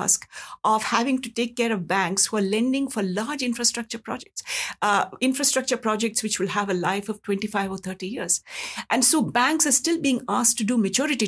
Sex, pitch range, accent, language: female, 190-250 Hz, Indian, English